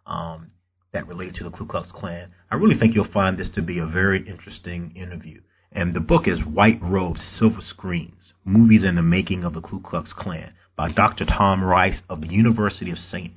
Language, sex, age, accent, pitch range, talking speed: English, male, 40-59, American, 90-110 Hz, 205 wpm